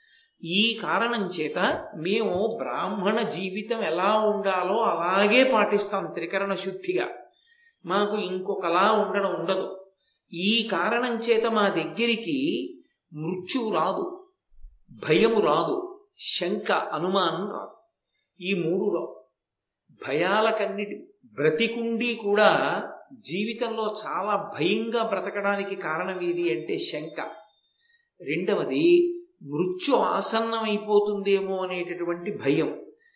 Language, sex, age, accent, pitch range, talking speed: Telugu, male, 50-69, native, 180-230 Hz, 85 wpm